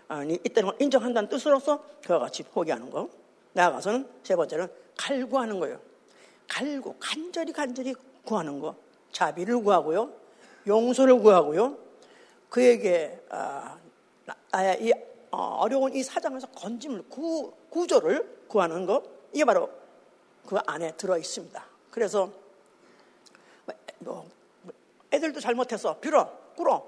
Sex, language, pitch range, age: female, Korean, 215-335 Hz, 50-69